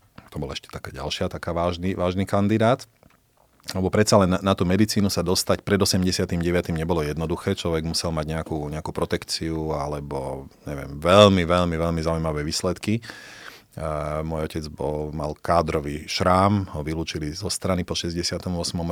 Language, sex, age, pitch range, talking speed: Slovak, male, 30-49, 80-95 Hz, 150 wpm